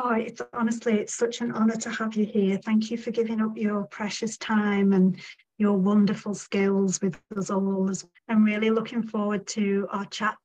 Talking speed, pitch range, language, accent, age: 200 wpm, 195-230 Hz, English, British, 40-59